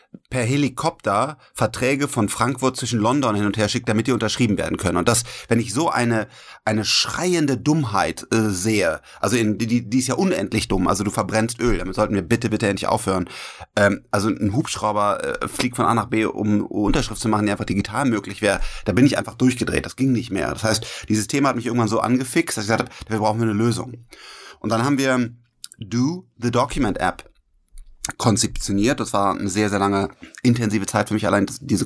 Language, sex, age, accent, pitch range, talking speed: German, male, 30-49, German, 105-125 Hz, 215 wpm